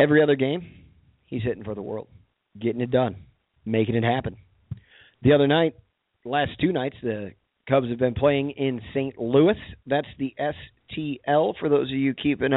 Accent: American